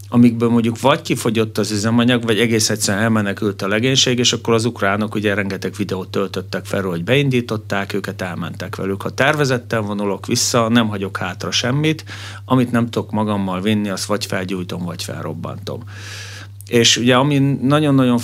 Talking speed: 160 wpm